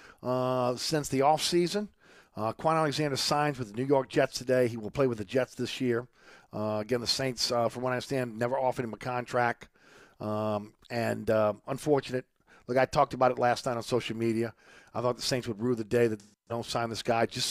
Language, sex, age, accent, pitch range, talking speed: English, male, 50-69, American, 115-140 Hz, 225 wpm